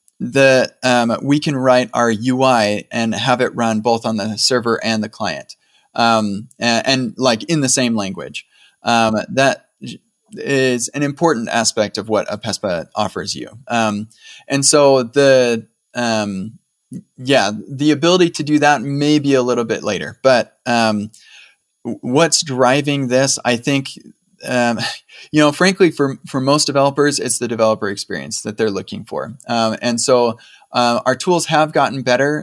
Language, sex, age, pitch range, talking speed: English, male, 20-39, 115-140 Hz, 160 wpm